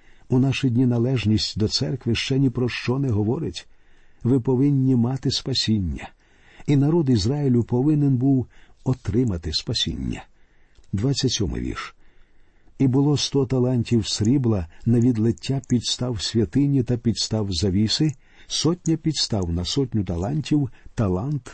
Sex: male